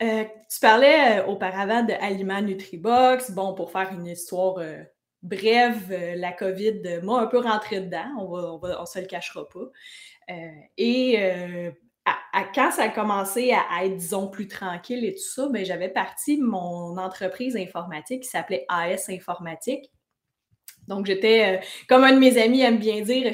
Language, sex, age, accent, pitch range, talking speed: French, female, 20-39, Canadian, 185-240 Hz, 170 wpm